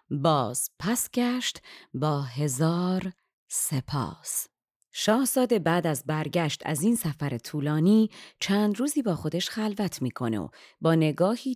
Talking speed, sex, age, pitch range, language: 125 wpm, female, 30-49, 145-190 Hz, Persian